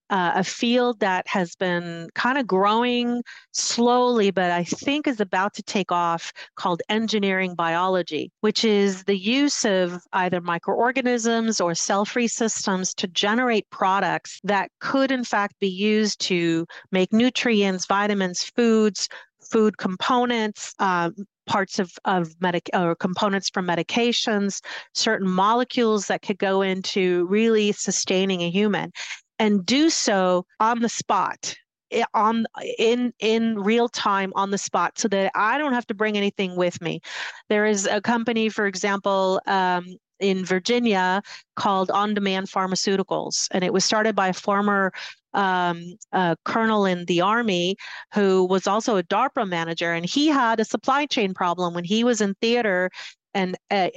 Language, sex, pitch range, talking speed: English, female, 185-225 Hz, 150 wpm